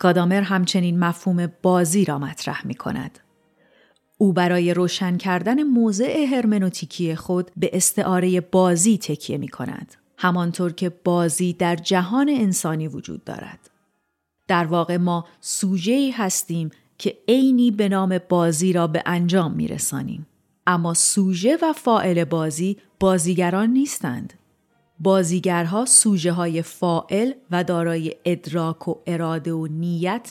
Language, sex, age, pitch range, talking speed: Persian, female, 40-59, 170-200 Hz, 125 wpm